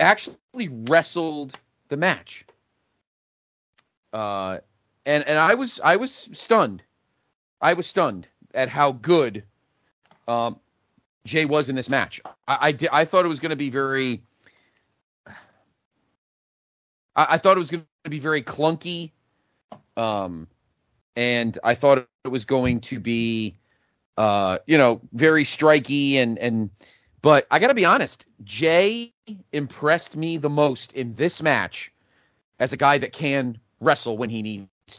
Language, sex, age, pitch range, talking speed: English, male, 40-59, 115-155 Hz, 140 wpm